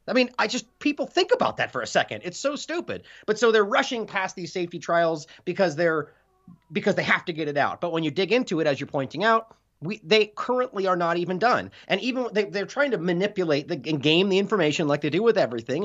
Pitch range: 150-215 Hz